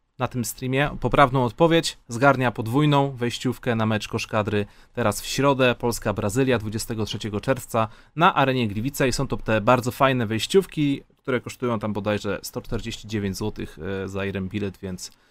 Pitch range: 110-160 Hz